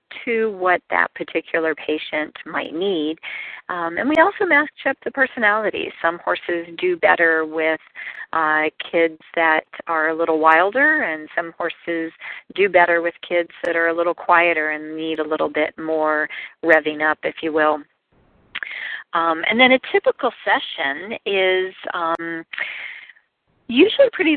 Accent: American